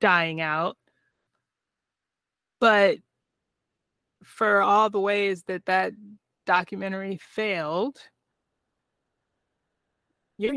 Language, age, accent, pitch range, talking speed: English, 20-39, American, 180-215 Hz, 70 wpm